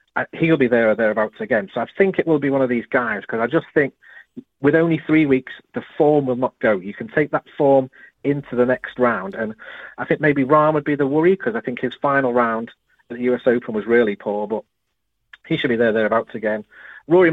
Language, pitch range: English, 115-145 Hz